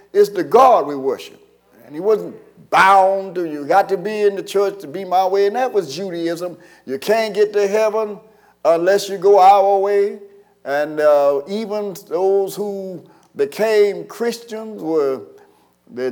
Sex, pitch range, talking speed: male, 180-255 Hz, 165 wpm